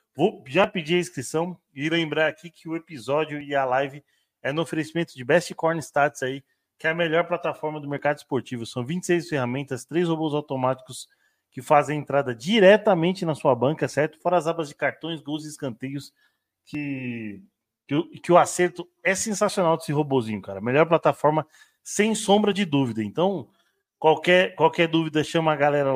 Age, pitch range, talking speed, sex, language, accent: 20-39, 135-170 Hz, 175 wpm, male, Portuguese, Brazilian